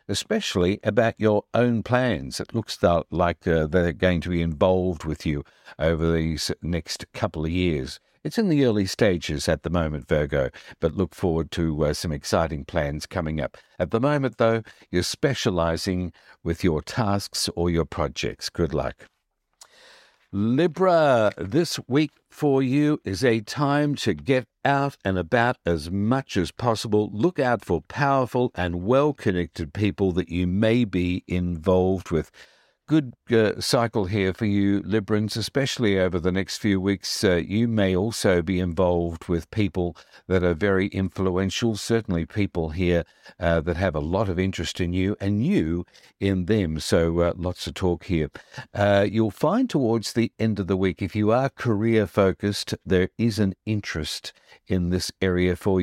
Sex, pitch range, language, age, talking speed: male, 85-110 Hz, English, 60-79, 165 wpm